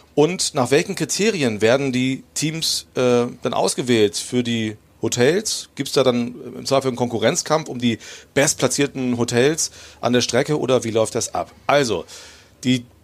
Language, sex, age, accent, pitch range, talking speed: German, male, 40-59, German, 115-145 Hz, 160 wpm